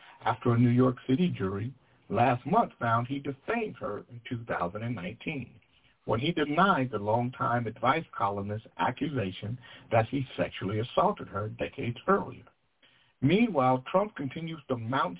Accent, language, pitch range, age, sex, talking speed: American, English, 115-140 Hz, 60-79, male, 135 wpm